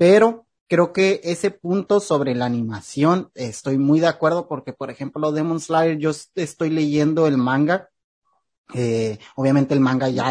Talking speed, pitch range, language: 155 wpm, 130-170 Hz, Spanish